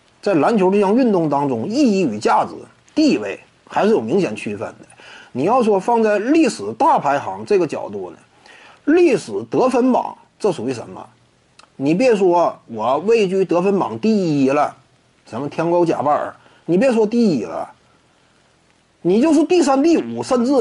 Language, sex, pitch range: Chinese, male, 190-300 Hz